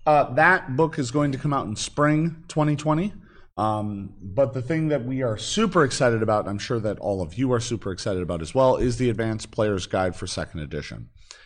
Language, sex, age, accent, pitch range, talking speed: English, male, 40-59, American, 100-145 Hz, 220 wpm